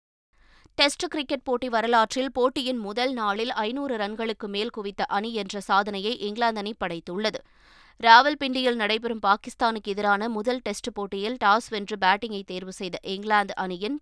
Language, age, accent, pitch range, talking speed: Tamil, 20-39, native, 205-250 Hz, 135 wpm